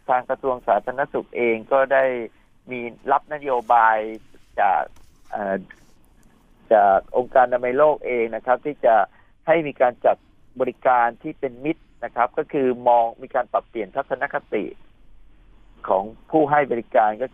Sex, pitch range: male, 115-140 Hz